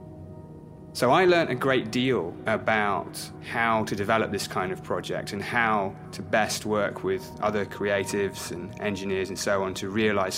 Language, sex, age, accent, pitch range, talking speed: English, male, 30-49, British, 105-140 Hz, 170 wpm